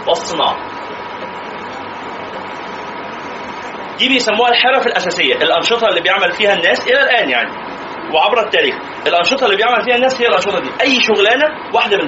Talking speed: 135 wpm